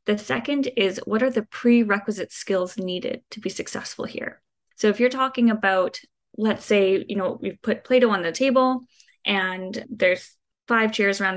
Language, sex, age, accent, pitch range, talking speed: English, female, 10-29, American, 195-245 Hz, 180 wpm